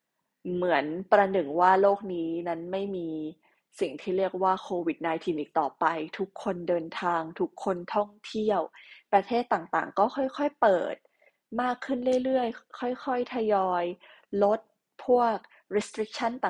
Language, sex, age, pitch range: Thai, female, 20-39, 180-240 Hz